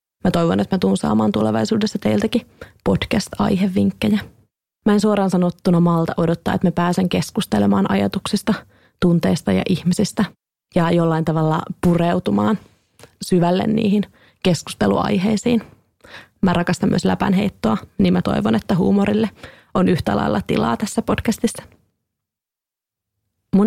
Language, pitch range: Finnish, 175-210 Hz